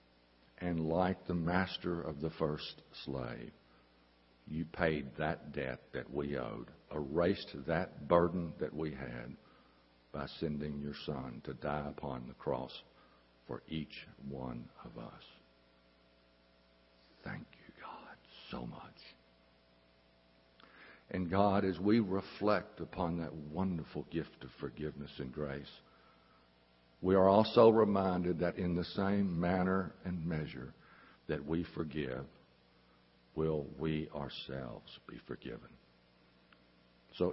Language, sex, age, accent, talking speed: English, male, 60-79, American, 115 wpm